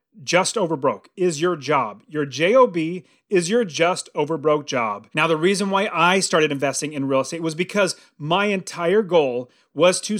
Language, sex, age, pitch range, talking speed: English, male, 30-49, 165-225 Hz, 170 wpm